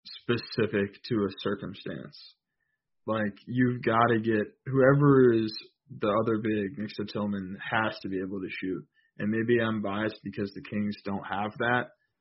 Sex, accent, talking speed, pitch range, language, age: male, American, 155 wpm, 105-125 Hz, English, 20-39